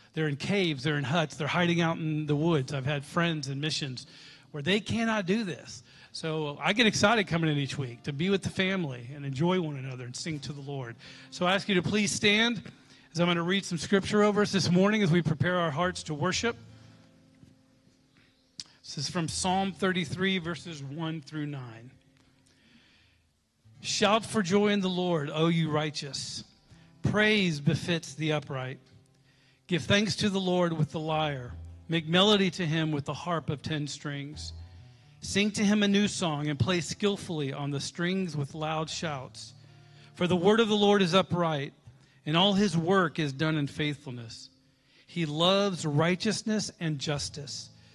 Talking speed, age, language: 180 wpm, 40-59, English